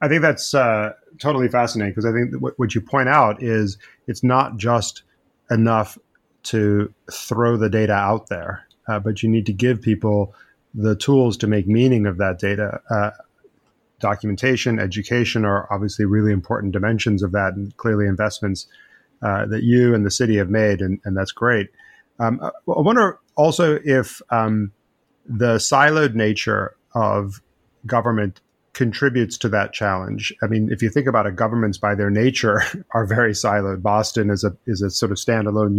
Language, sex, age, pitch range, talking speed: English, male, 30-49, 105-120 Hz, 175 wpm